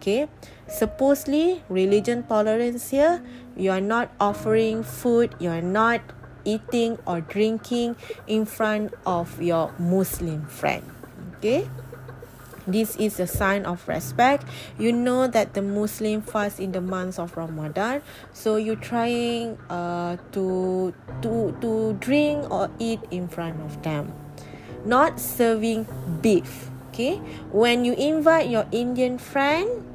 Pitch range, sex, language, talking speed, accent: 180-235 Hz, female, English, 130 wpm, Malaysian